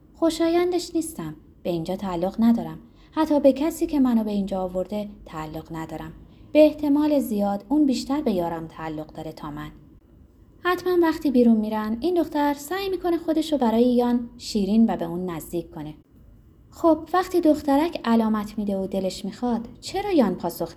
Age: 20-39